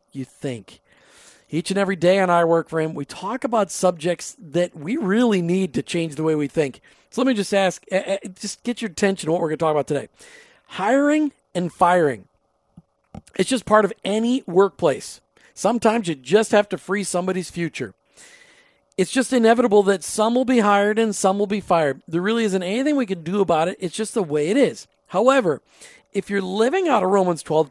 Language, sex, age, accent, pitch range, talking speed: English, male, 50-69, American, 170-220 Hz, 210 wpm